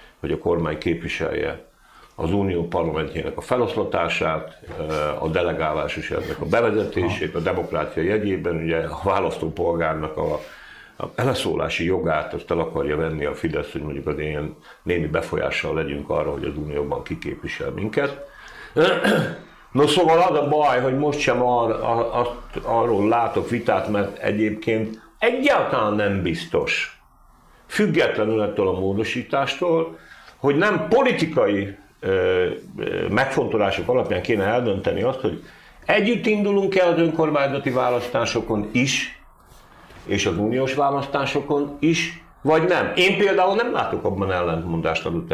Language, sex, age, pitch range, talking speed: Hungarian, male, 60-79, 100-160 Hz, 125 wpm